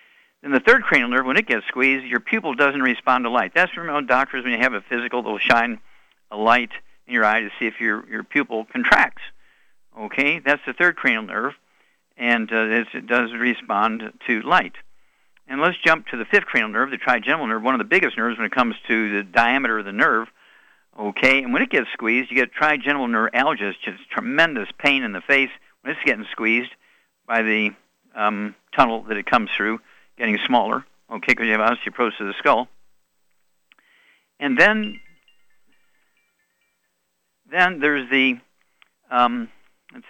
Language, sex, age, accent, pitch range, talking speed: English, male, 60-79, American, 115-140 Hz, 180 wpm